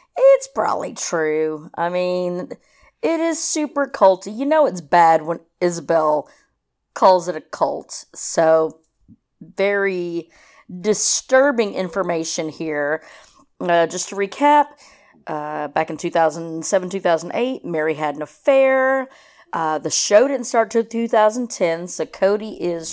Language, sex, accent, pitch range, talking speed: English, female, American, 165-260 Hz, 120 wpm